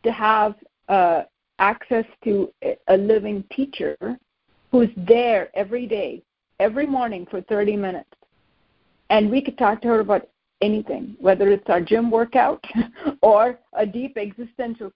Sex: female